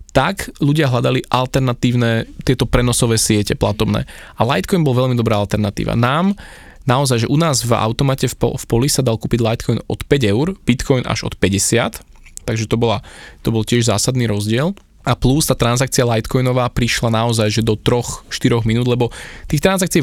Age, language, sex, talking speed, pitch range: 20-39, Slovak, male, 170 wpm, 115-140 Hz